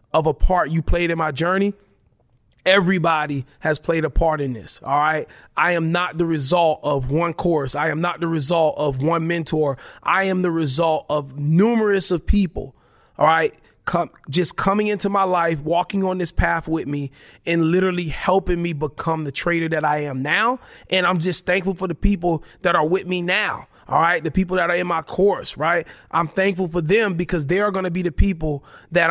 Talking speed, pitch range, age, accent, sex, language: 205 wpm, 155-180 Hz, 30-49, American, male, English